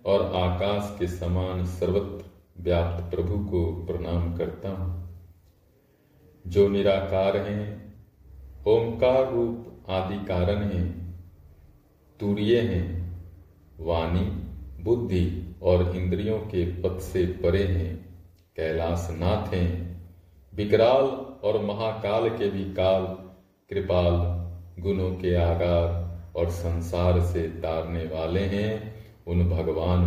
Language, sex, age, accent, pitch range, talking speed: Hindi, male, 40-59, native, 85-100 Hz, 100 wpm